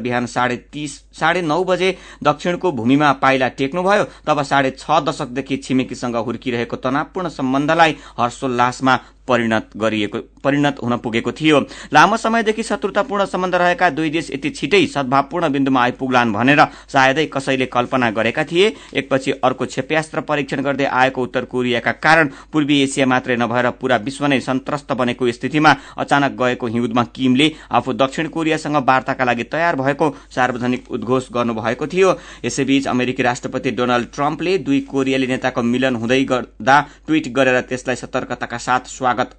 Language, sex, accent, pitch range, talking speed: English, male, Indian, 125-150 Hz, 120 wpm